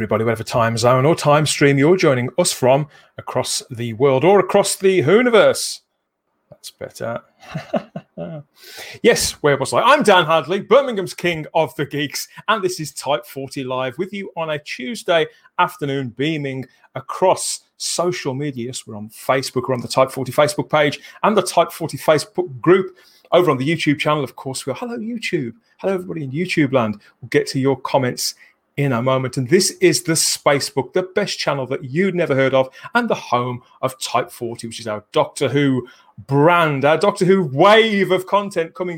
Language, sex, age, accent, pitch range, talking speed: English, male, 30-49, British, 125-175 Hz, 185 wpm